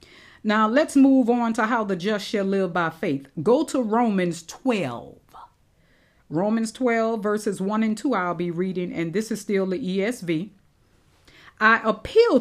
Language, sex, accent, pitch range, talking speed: English, female, American, 160-230 Hz, 160 wpm